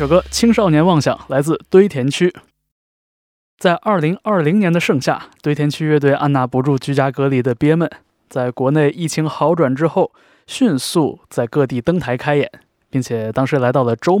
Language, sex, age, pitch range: Chinese, male, 20-39, 130-165 Hz